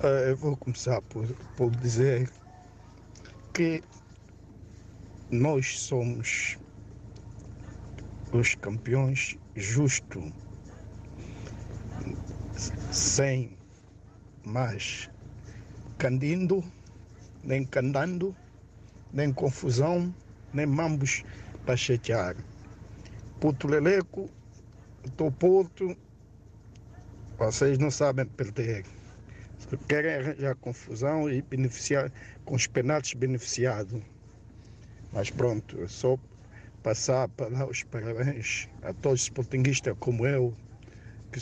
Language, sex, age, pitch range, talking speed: Portuguese, male, 60-79, 105-135 Hz, 80 wpm